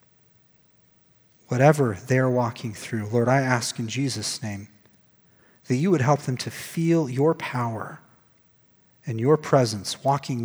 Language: English